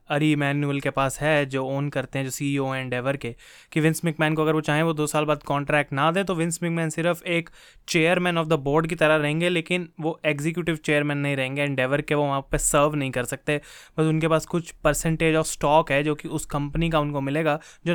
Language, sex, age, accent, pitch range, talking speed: Hindi, male, 20-39, native, 145-170 Hz, 235 wpm